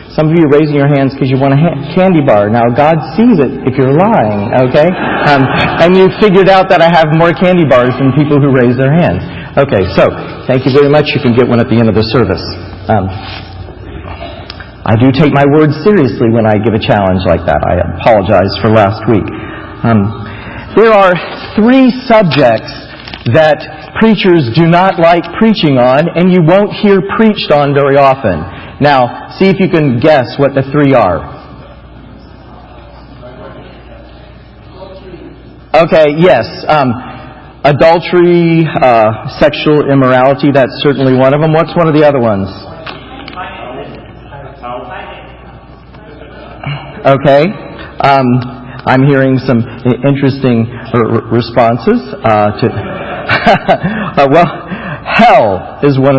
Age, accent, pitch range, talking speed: 40-59, American, 115-165 Hz, 145 wpm